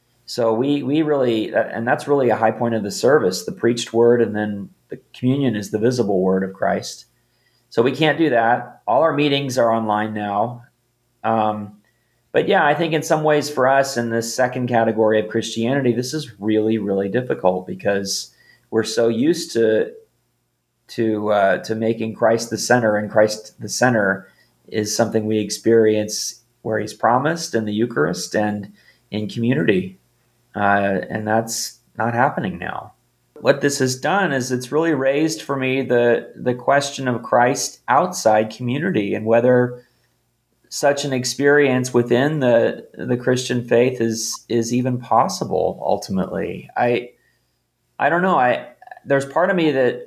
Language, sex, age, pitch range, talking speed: English, male, 30-49, 110-130 Hz, 160 wpm